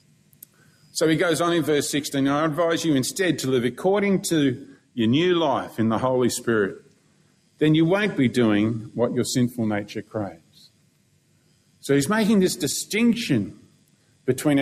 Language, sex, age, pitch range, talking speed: English, male, 50-69, 120-155 Hz, 155 wpm